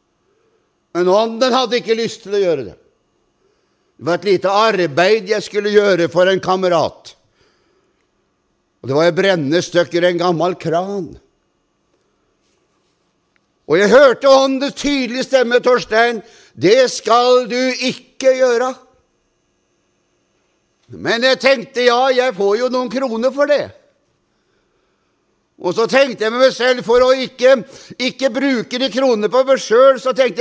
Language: German